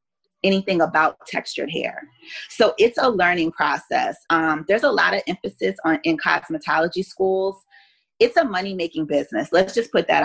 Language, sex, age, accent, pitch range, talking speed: English, female, 30-49, American, 160-195 Hz, 165 wpm